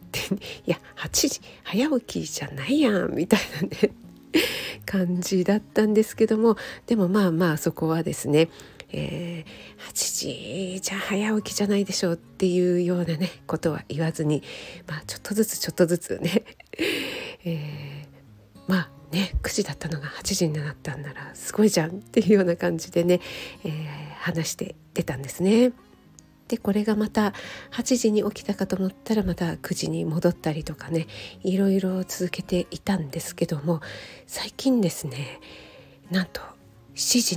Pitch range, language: 160-195 Hz, Japanese